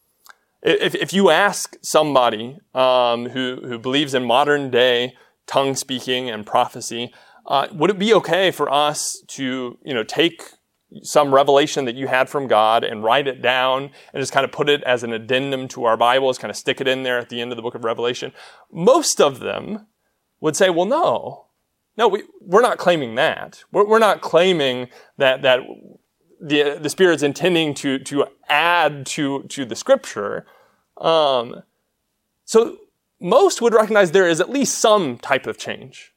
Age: 30-49